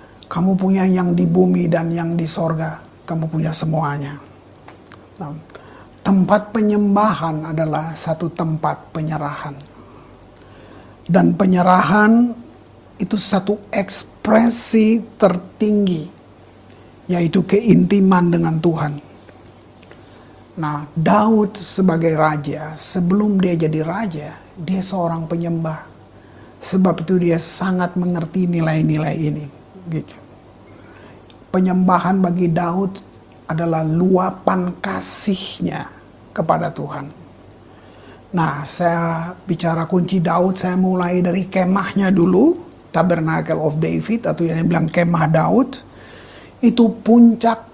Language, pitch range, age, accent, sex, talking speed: Indonesian, 145-185 Hz, 50-69, native, male, 95 wpm